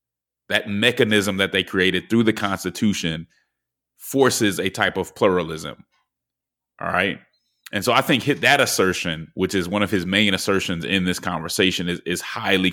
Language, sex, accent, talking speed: English, male, American, 160 wpm